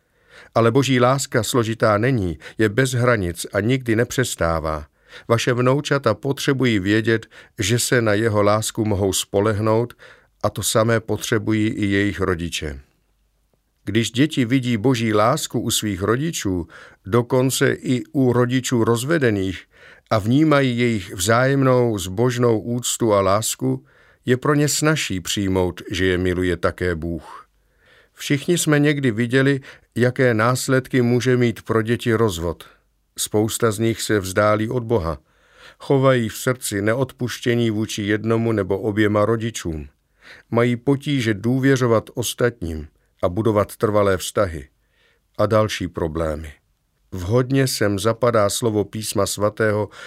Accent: native